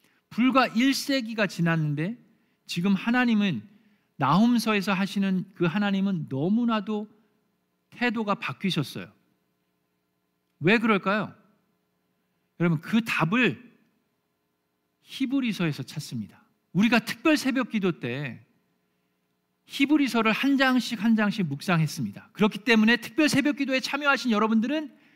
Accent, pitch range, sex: native, 165-235 Hz, male